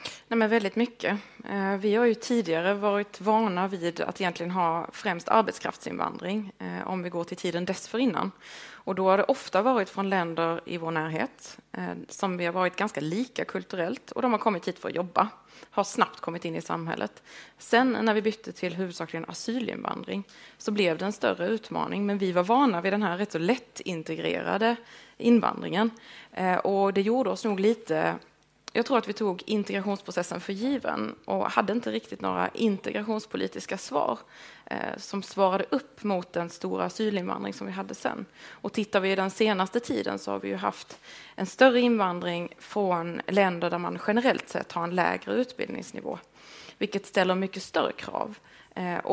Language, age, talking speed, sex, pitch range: English, 20-39, 175 wpm, female, 175-220 Hz